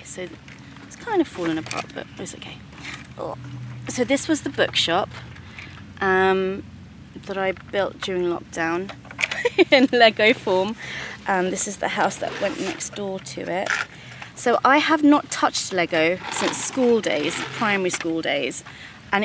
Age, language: 30-49, English